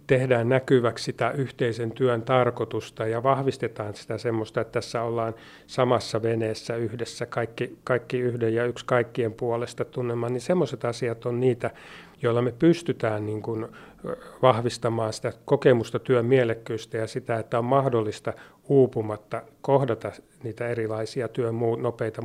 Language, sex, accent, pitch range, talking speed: Finnish, male, native, 120-130 Hz, 130 wpm